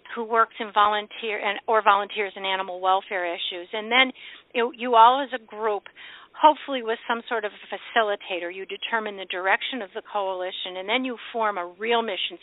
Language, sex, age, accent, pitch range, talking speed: English, female, 50-69, American, 190-225 Hz, 180 wpm